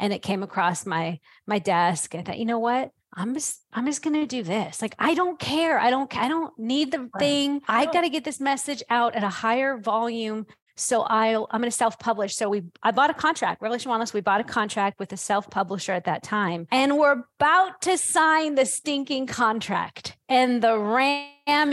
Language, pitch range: English, 195-255 Hz